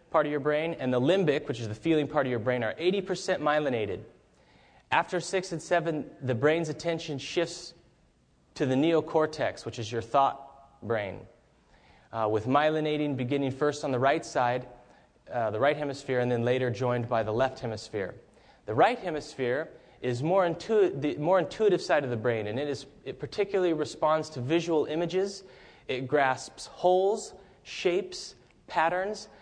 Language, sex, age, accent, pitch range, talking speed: English, male, 30-49, American, 115-160 Hz, 165 wpm